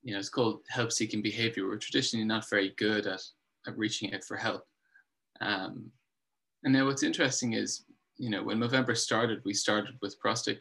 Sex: male